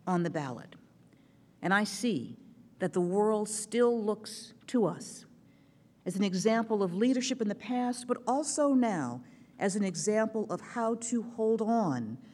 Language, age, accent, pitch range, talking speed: English, 50-69, American, 180-235 Hz, 155 wpm